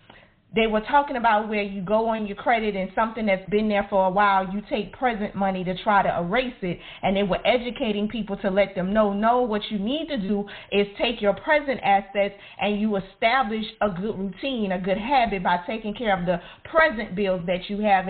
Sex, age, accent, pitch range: female, 40-59, American, 195-250 Hz